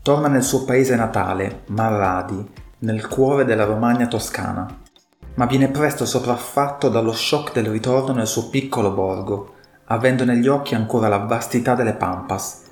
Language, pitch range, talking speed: Italian, 105-130 Hz, 145 wpm